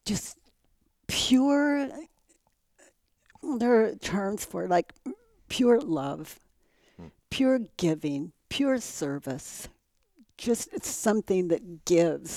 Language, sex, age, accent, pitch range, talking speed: English, female, 60-79, American, 175-240 Hz, 85 wpm